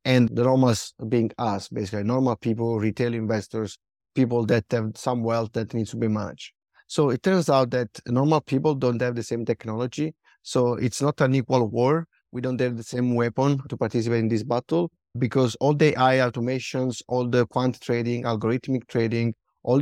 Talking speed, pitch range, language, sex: 185 wpm, 115-135 Hz, English, male